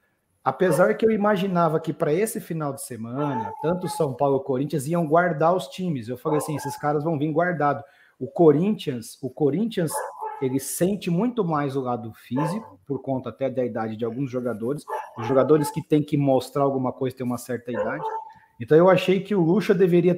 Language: Portuguese